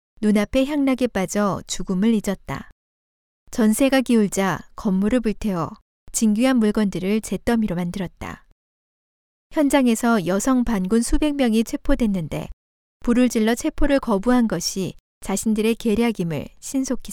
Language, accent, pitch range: Korean, native, 195-250 Hz